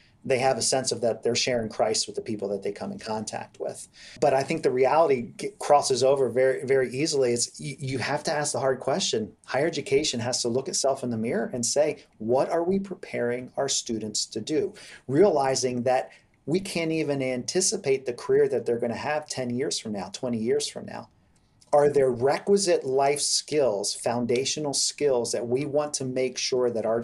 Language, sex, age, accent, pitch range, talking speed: English, male, 40-59, American, 125-160 Hz, 205 wpm